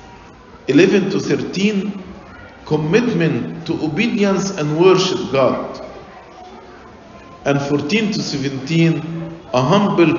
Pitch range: 145-185 Hz